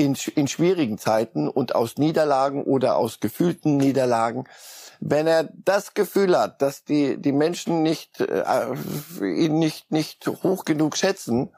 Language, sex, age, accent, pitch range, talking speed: German, male, 60-79, German, 130-160 Hz, 145 wpm